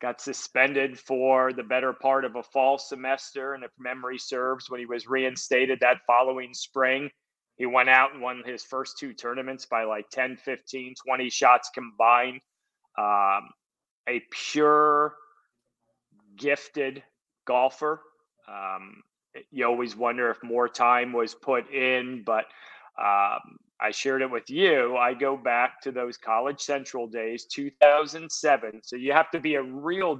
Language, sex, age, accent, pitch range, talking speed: English, male, 30-49, American, 125-145 Hz, 150 wpm